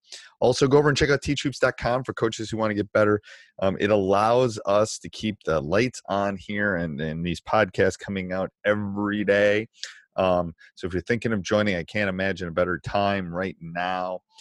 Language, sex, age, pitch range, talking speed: English, male, 30-49, 85-110 Hz, 195 wpm